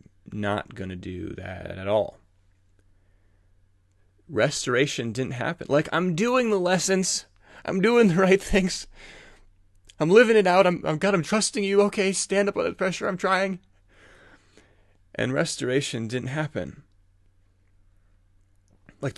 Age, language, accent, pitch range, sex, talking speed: 30-49, English, American, 95-145 Hz, male, 130 wpm